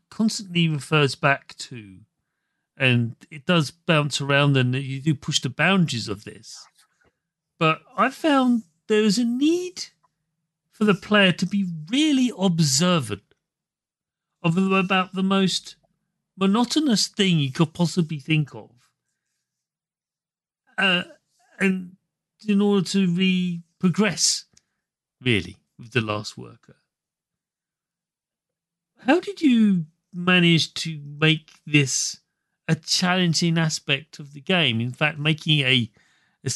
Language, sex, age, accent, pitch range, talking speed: English, male, 40-59, British, 130-185 Hz, 115 wpm